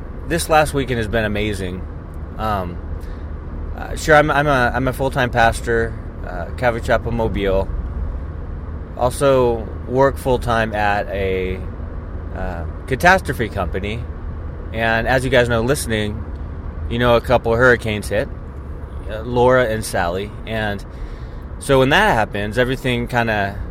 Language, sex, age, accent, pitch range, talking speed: English, male, 20-39, American, 85-120 Hz, 130 wpm